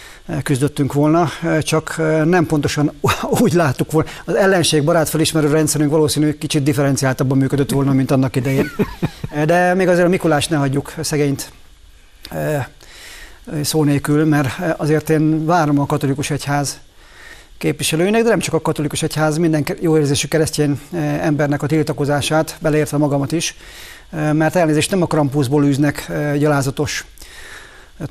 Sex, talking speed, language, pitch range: male, 130 wpm, Hungarian, 140-155 Hz